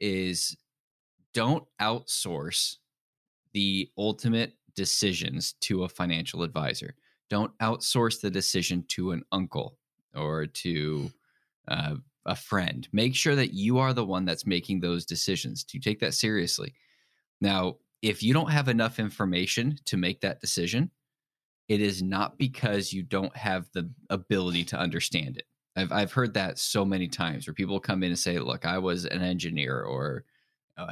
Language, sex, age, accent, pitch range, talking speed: English, male, 10-29, American, 90-115 Hz, 155 wpm